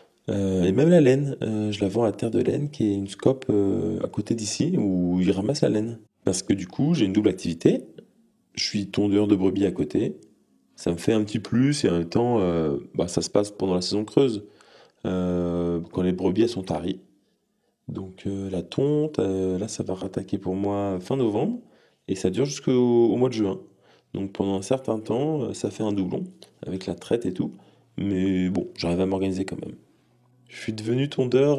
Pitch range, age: 95-130 Hz, 20-39